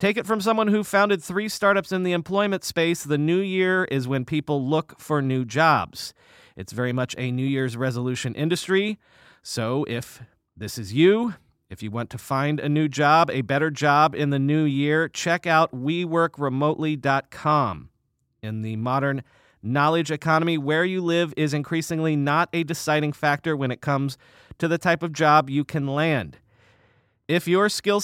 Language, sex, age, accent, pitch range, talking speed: English, male, 40-59, American, 135-175 Hz, 175 wpm